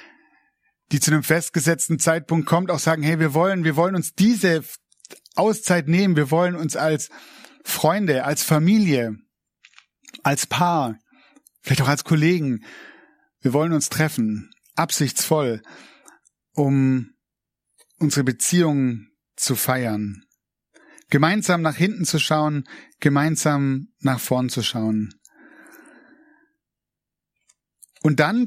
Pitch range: 135-180 Hz